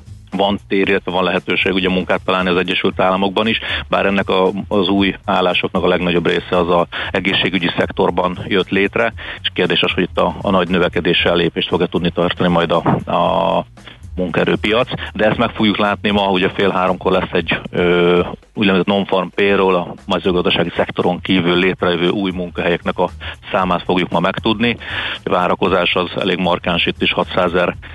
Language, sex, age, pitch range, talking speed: Hungarian, male, 40-59, 90-100 Hz, 170 wpm